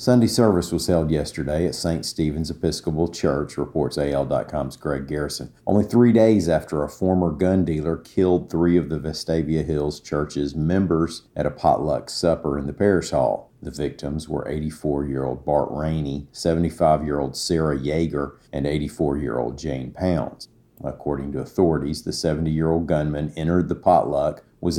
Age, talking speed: 50-69, 150 wpm